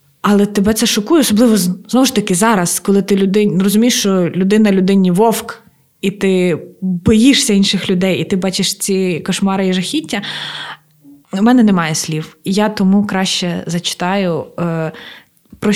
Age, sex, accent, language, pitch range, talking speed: 20-39, female, native, Ukrainian, 160-200 Hz, 150 wpm